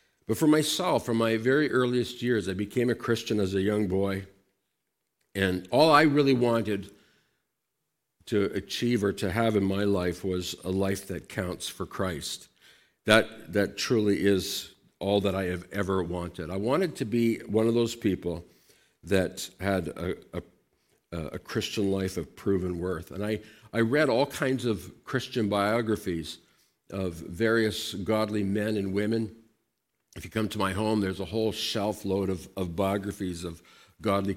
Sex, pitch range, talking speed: male, 90-110 Hz, 165 wpm